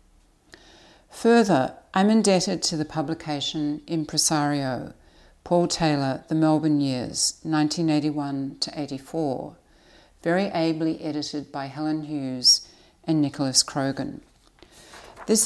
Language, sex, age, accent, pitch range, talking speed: English, female, 60-79, Australian, 140-170 Hz, 95 wpm